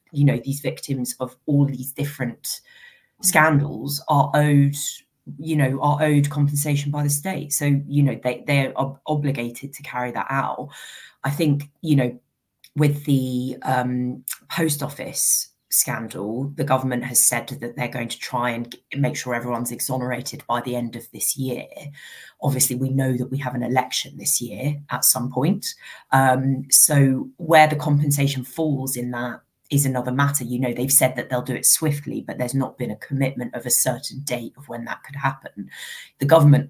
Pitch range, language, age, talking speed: 125-145 Hz, English, 30-49, 180 wpm